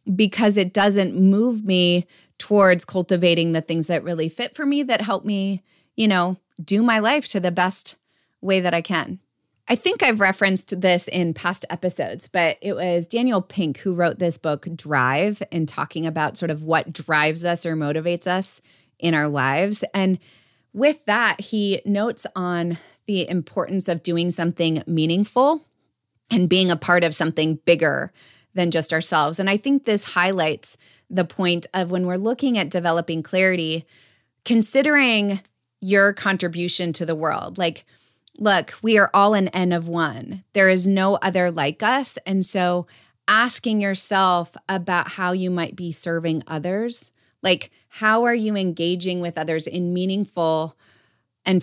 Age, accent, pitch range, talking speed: 30-49, American, 165-200 Hz, 160 wpm